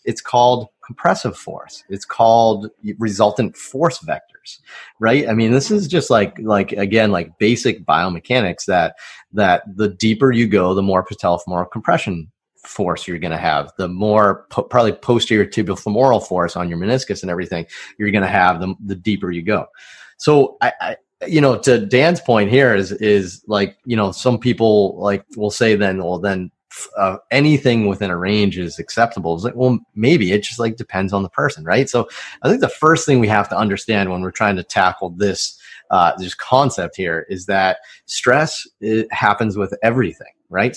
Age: 30-49